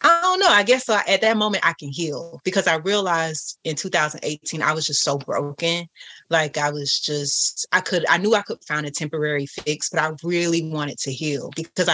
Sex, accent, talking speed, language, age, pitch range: female, American, 210 wpm, English, 30-49, 150-170 Hz